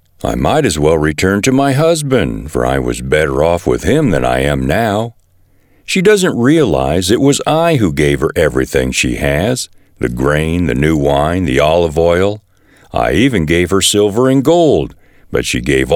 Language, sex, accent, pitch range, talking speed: English, male, American, 80-125 Hz, 185 wpm